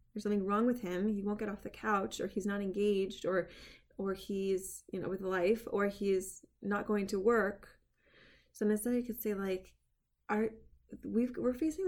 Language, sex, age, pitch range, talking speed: English, female, 20-39, 180-215 Hz, 185 wpm